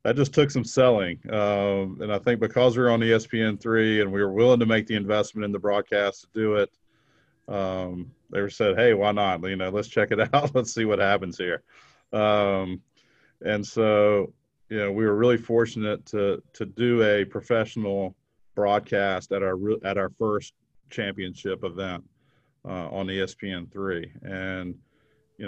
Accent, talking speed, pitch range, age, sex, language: American, 170 wpm, 100-120 Hz, 40-59, male, English